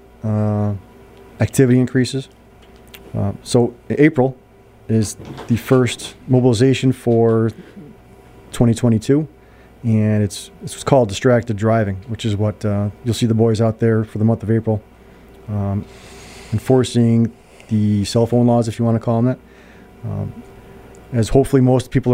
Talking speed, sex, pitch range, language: 140 wpm, male, 105-125 Hz, English